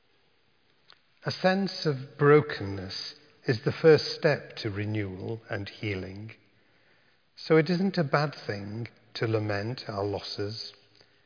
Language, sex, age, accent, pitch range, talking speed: English, male, 50-69, British, 110-135 Hz, 115 wpm